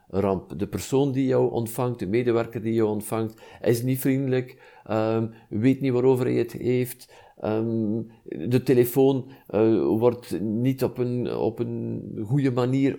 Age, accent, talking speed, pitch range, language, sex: 50-69, Swiss, 150 wpm, 115-135 Hz, Dutch, male